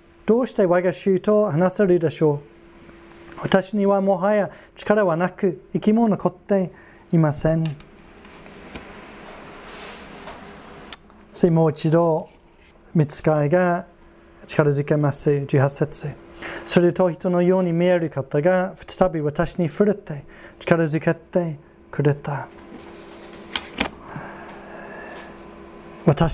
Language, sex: Japanese, male